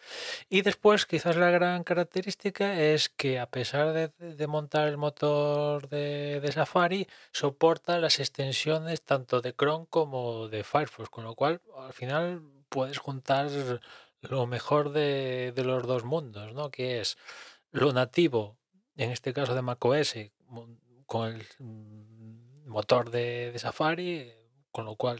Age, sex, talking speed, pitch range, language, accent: 20-39, male, 145 wpm, 120-145 Hz, Spanish, Spanish